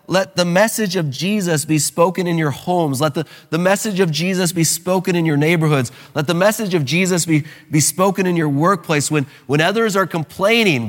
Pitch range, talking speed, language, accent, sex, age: 145-195 Hz, 205 wpm, English, American, male, 30-49